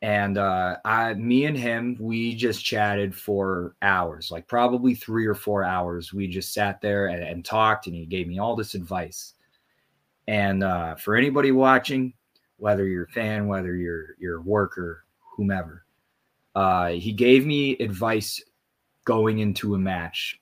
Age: 20-39